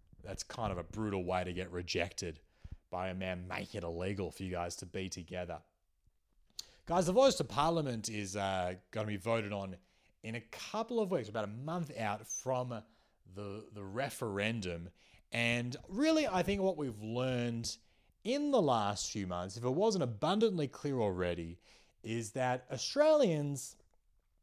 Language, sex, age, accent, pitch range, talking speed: English, male, 30-49, Australian, 100-170 Hz, 165 wpm